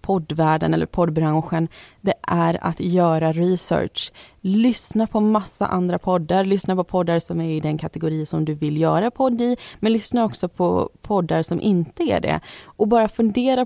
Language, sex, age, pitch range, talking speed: Swedish, female, 20-39, 170-215 Hz, 165 wpm